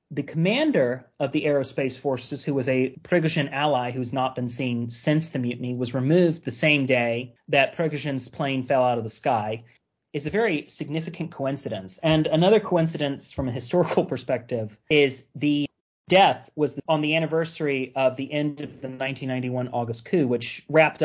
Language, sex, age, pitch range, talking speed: English, male, 30-49, 125-155 Hz, 175 wpm